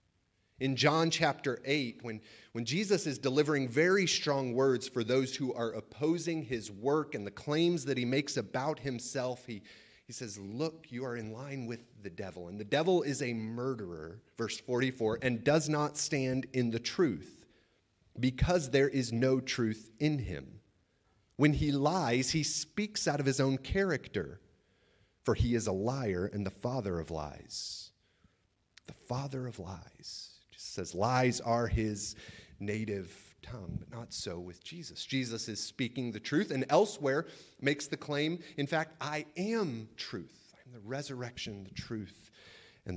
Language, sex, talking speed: English, male, 160 wpm